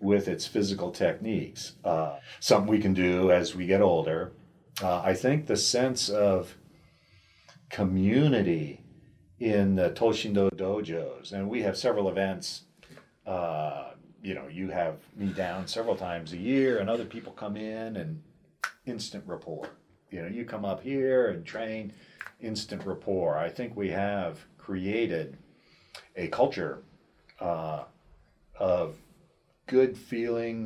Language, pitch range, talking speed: English, 95-115 Hz, 135 wpm